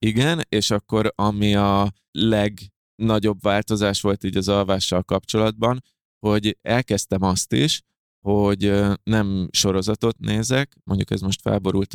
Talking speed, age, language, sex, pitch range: 120 wpm, 20-39, Hungarian, male, 95-110 Hz